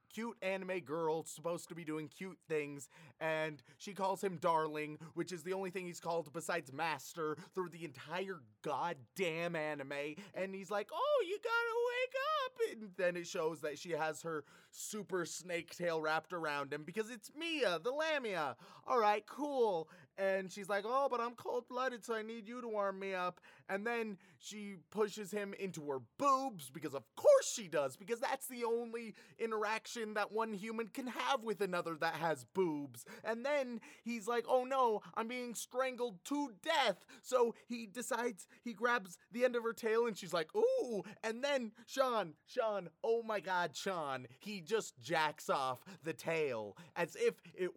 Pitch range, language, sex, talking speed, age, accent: 165-235 Hz, English, male, 180 wpm, 30-49, American